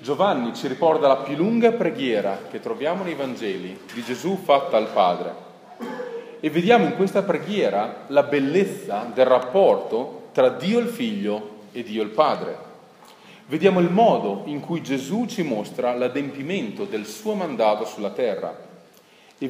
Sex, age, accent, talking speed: male, 40-59, native, 150 wpm